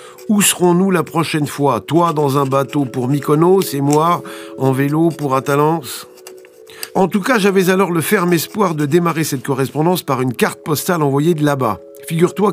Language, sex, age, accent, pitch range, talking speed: French, male, 50-69, French, 120-155 Hz, 175 wpm